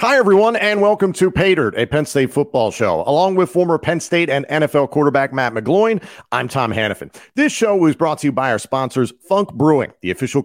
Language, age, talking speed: English, 40-59, 215 wpm